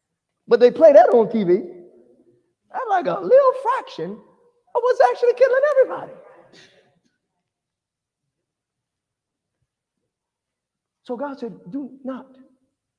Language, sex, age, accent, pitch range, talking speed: English, male, 40-59, American, 170-285 Hz, 95 wpm